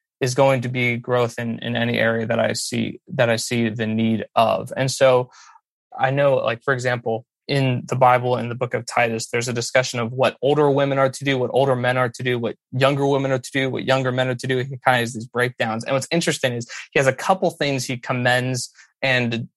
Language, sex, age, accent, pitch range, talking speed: English, male, 20-39, American, 120-135 Hz, 240 wpm